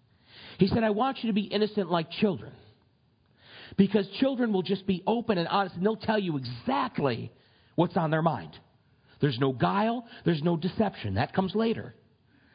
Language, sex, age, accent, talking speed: English, male, 40-59, American, 170 wpm